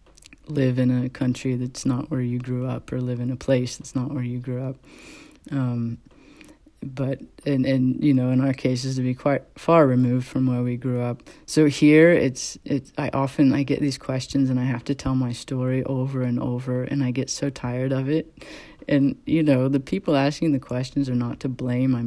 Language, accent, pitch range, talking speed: English, American, 125-140 Hz, 220 wpm